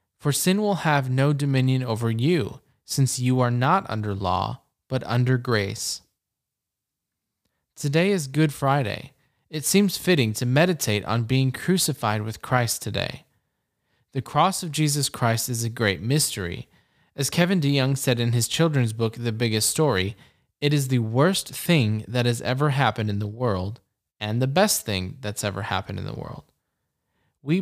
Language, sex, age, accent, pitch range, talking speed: English, male, 20-39, American, 110-145 Hz, 165 wpm